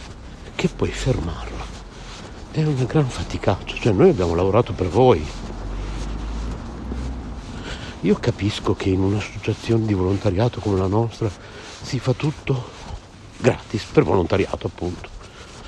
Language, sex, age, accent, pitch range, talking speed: Italian, male, 60-79, native, 95-115 Hz, 115 wpm